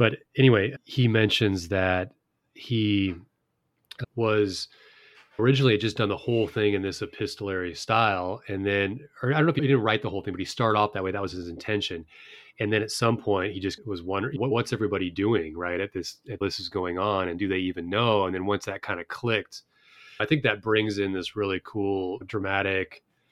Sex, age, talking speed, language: male, 30-49, 205 wpm, English